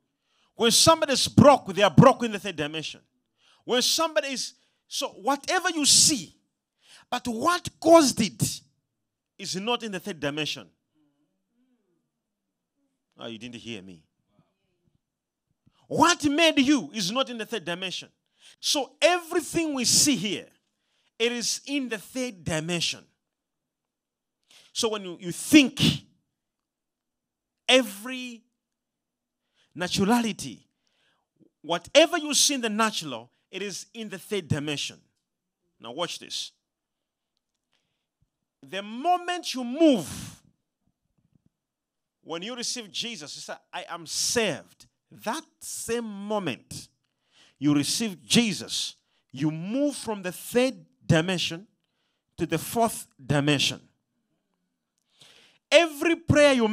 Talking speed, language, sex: 110 wpm, English, male